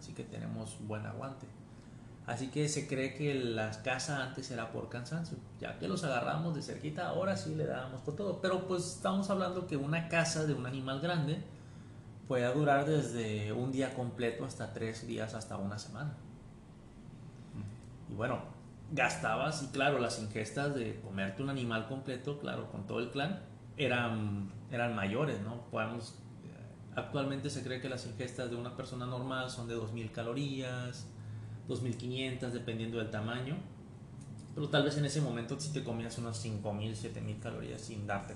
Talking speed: 165 wpm